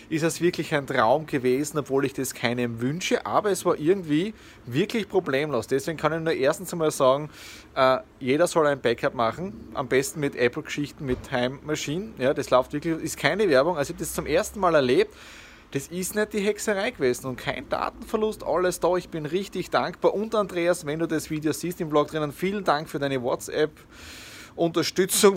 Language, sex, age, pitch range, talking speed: German, male, 20-39, 130-175 Hz, 195 wpm